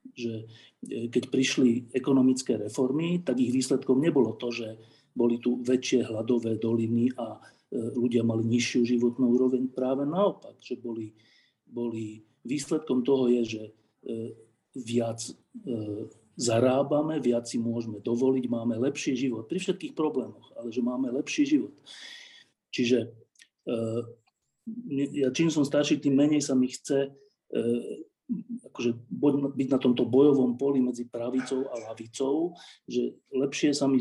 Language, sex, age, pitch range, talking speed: Slovak, male, 40-59, 120-145 Hz, 125 wpm